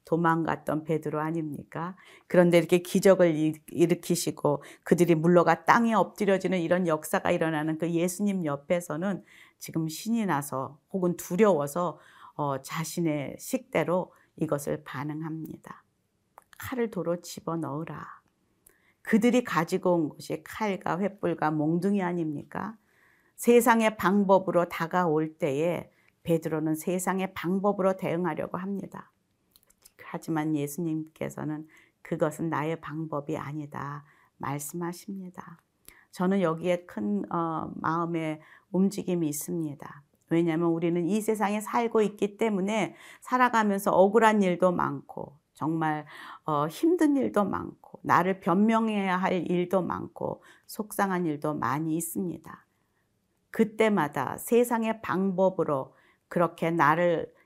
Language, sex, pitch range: Korean, female, 155-195 Hz